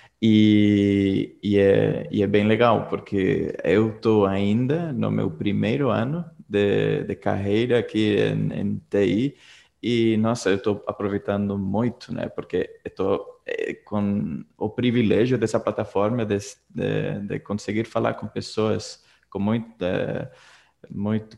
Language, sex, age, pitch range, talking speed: English, male, 20-39, 100-115 Hz, 130 wpm